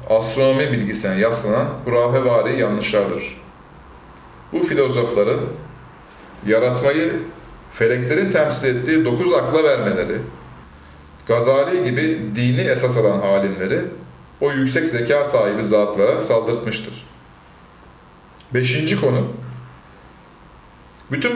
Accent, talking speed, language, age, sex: native, 85 wpm, Turkish, 40-59, male